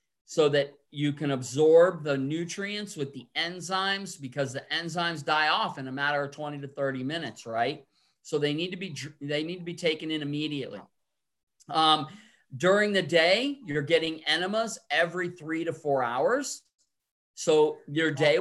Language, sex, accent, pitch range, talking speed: English, male, American, 145-200 Hz, 165 wpm